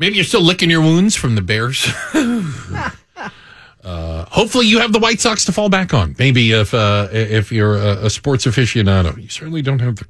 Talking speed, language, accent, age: 200 wpm, English, American, 40-59